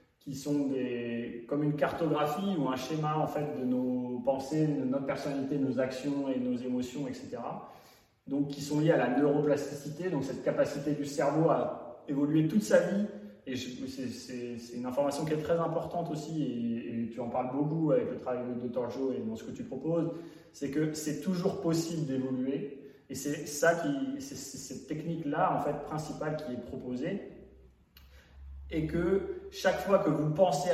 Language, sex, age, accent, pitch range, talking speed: French, male, 30-49, French, 130-165 Hz, 195 wpm